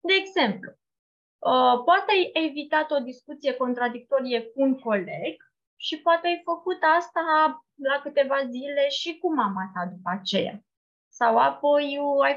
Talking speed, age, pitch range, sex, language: 135 wpm, 20-39, 220-300 Hz, female, Romanian